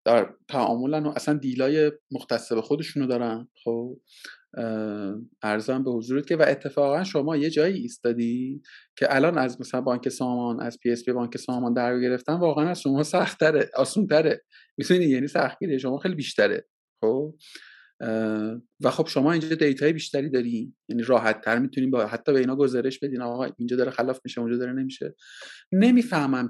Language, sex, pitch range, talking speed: Persian, male, 120-150 Hz, 165 wpm